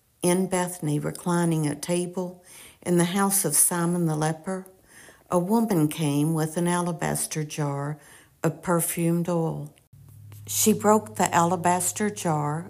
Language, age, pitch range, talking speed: English, 60-79, 150-180 Hz, 130 wpm